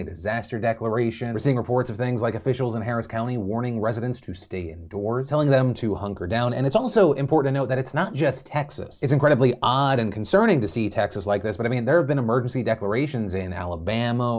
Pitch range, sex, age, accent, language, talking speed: 110-140 Hz, male, 30-49, American, English, 225 wpm